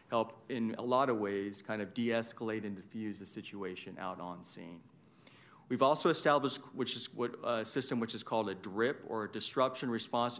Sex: male